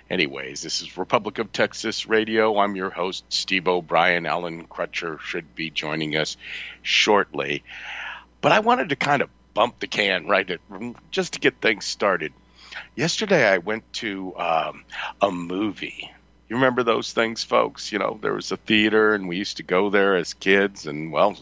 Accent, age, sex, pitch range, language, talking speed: American, 50-69, male, 75-110 Hz, English, 175 wpm